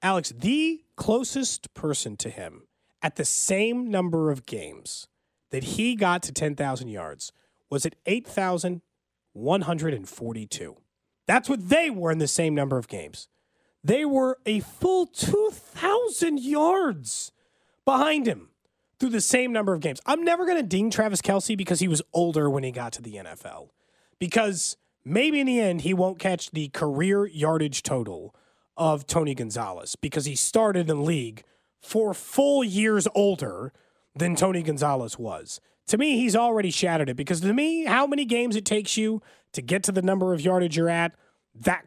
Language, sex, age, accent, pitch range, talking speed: English, male, 30-49, American, 150-220 Hz, 165 wpm